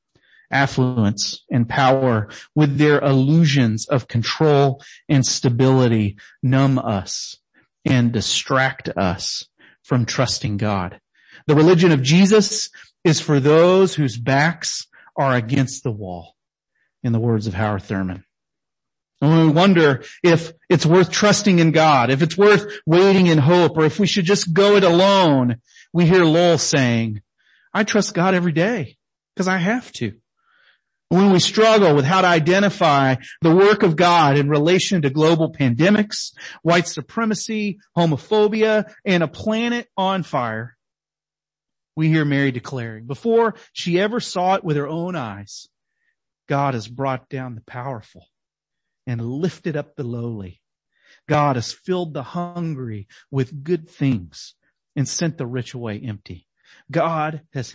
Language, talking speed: English, 145 wpm